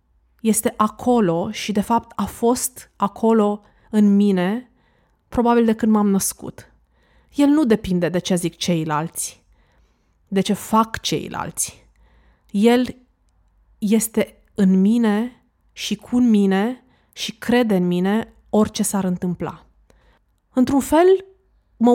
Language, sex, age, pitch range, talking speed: Romanian, female, 20-39, 175-235 Hz, 120 wpm